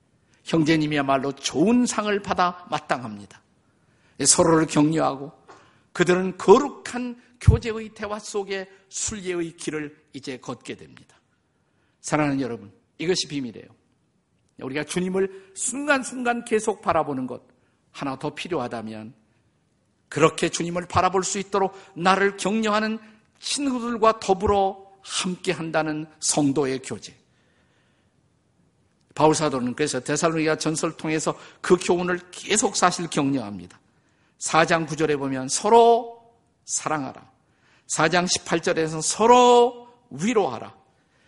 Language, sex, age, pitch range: Korean, male, 50-69, 155-205 Hz